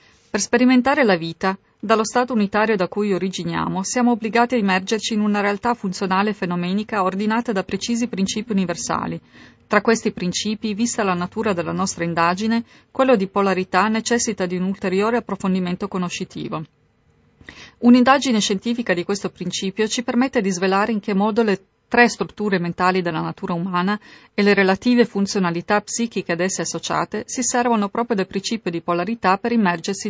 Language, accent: Italian, native